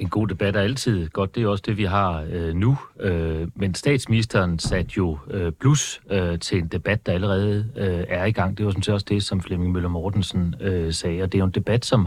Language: Danish